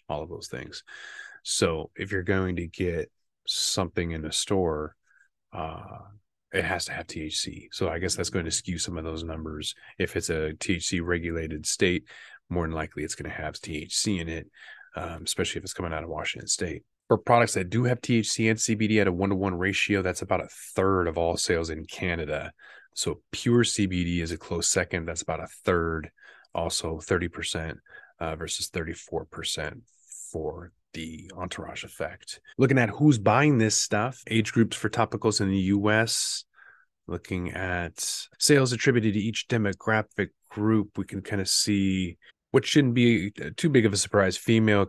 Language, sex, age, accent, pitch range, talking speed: English, male, 30-49, American, 85-110 Hz, 175 wpm